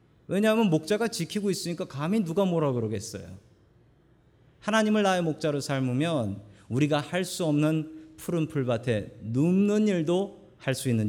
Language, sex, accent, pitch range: Korean, male, native, 120-180 Hz